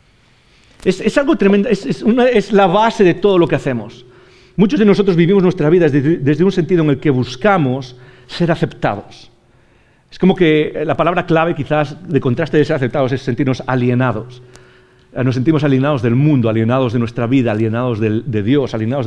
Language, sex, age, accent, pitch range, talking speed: English, male, 40-59, Spanish, 125-160 Hz, 190 wpm